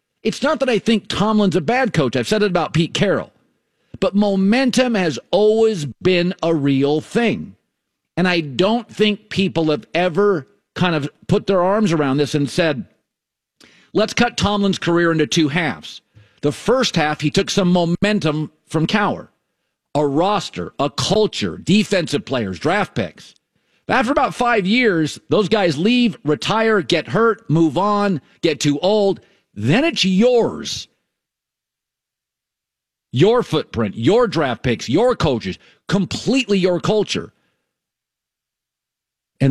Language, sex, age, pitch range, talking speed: English, male, 50-69, 155-210 Hz, 140 wpm